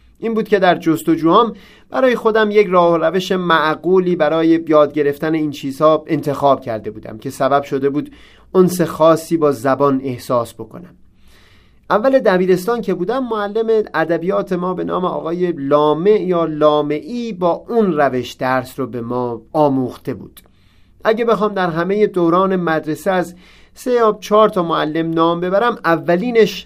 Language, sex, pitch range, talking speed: Persian, male, 145-190 Hz, 155 wpm